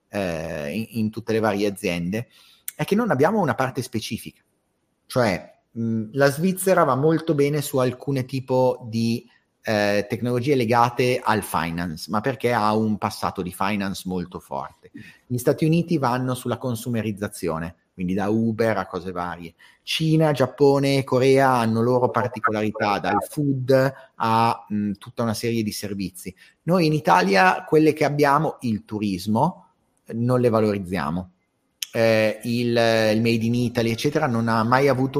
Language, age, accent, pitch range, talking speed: Italian, 30-49, native, 110-135 Hz, 145 wpm